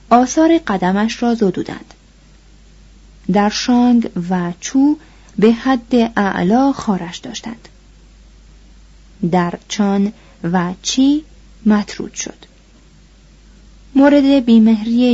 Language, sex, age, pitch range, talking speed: Persian, female, 30-49, 190-245 Hz, 85 wpm